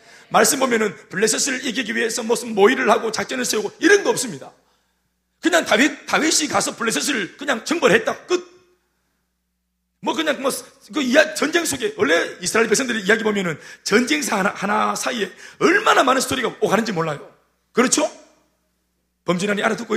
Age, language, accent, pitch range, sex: 40-59, Korean, native, 190-305 Hz, male